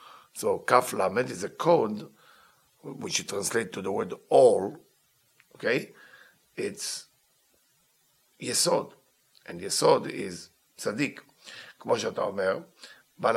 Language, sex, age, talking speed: English, male, 50-69, 105 wpm